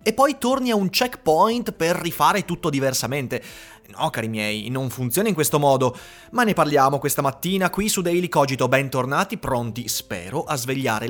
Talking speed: 175 wpm